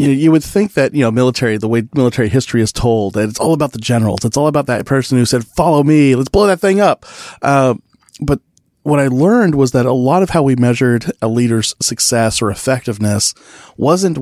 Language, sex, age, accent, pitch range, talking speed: English, male, 40-59, American, 110-130 Hz, 220 wpm